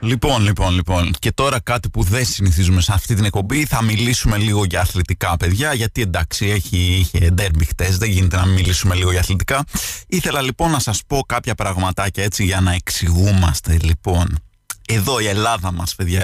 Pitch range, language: 95-140 Hz, Greek